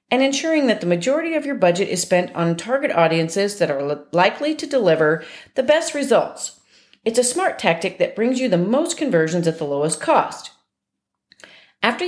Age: 40-59